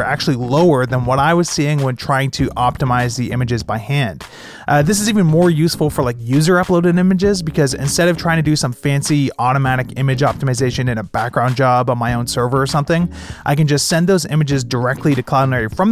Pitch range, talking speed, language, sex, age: 130-160 Hz, 220 wpm, English, male, 30-49